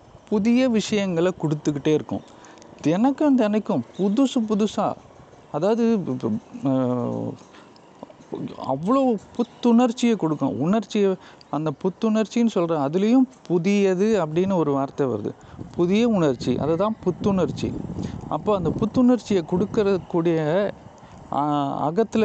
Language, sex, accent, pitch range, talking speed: Tamil, male, native, 145-205 Hz, 85 wpm